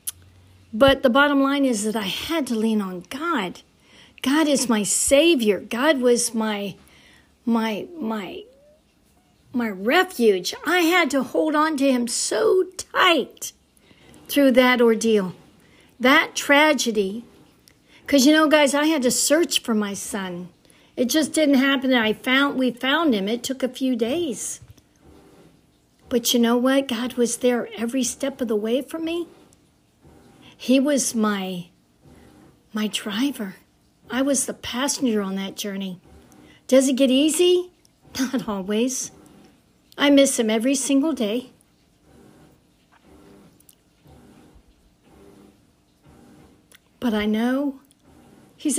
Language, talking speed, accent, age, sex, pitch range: English, 130 wpm, American, 60-79, female, 220-275 Hz